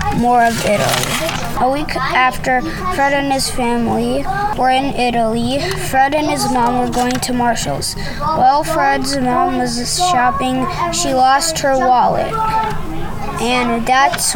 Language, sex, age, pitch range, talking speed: English, female, 20-39, 245-280 Hz, 135 wpm